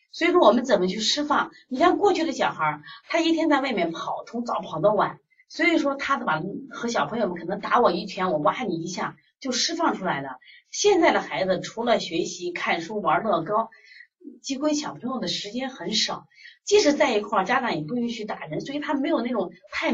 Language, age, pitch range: Chinese, 30-49, 180-290 Hz